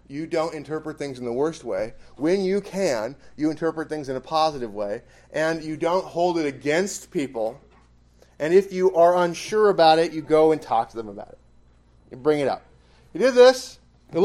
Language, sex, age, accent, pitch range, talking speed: English, male, 30-49, American, 110-185 Hz, 200 wpm